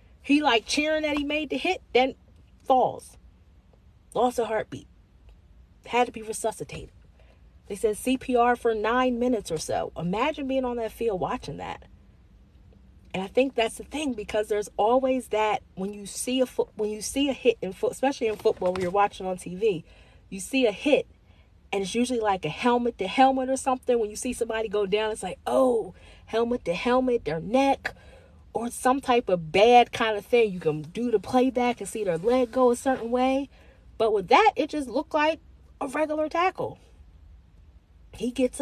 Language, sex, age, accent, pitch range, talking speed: English, female, 30-49, American, 165-260 Hz, 190 wpm